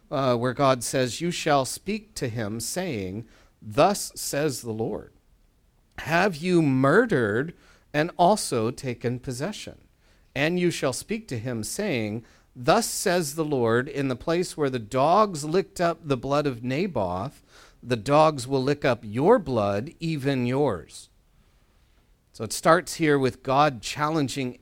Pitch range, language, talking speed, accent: 120-155 Hz, English, 145 wpm, American